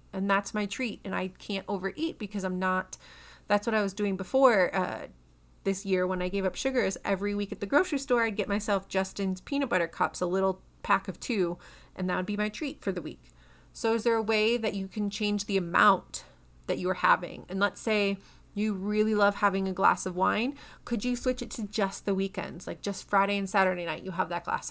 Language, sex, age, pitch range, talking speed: English, female, 30-49, 185-230 Hz, 235 wpm